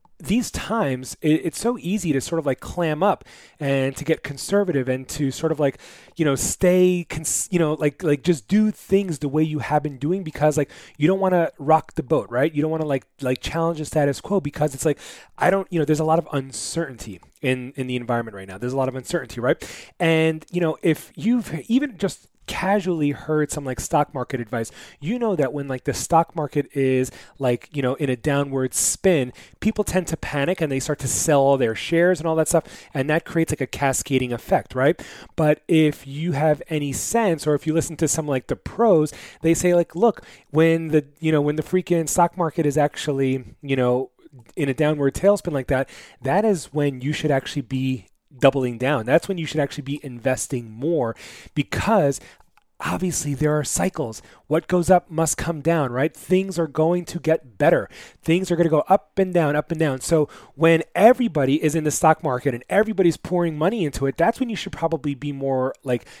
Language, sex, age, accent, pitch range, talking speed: English, male, 30-49, American, 135-170 Hz, 220 wpm